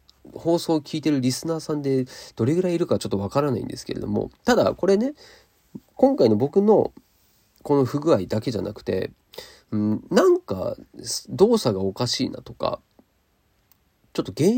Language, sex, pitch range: Japanese, male, 110-170 Hz